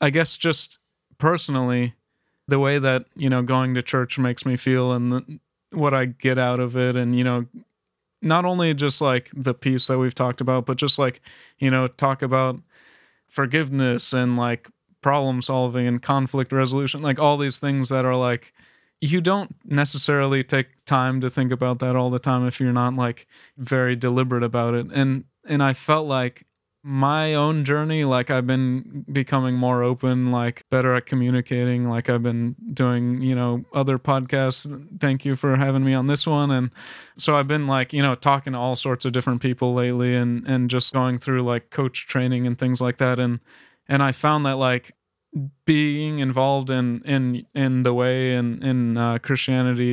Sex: male